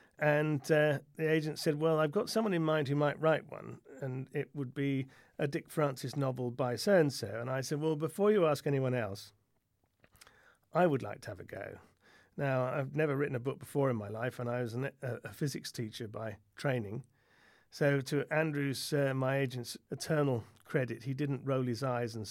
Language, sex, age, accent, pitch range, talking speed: English, male, 40-59, British, 120-145 Hz, 200 wpm